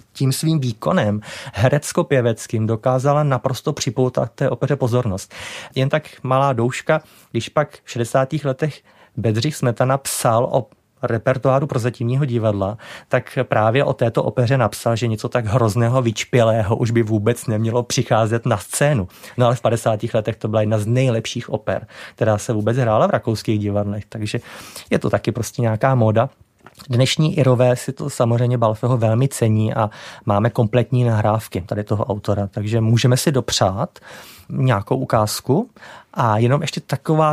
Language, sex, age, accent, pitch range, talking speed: Czech, male, 30-49, native, 115-140 Hz, 150 wpm